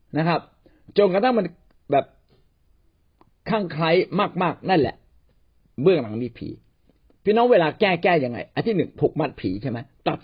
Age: 50-69